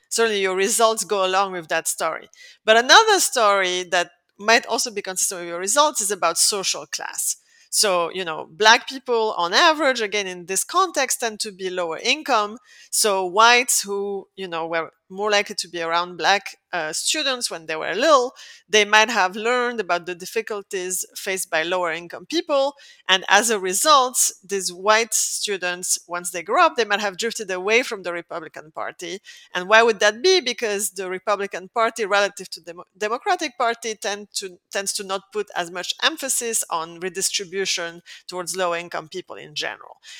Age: 30-49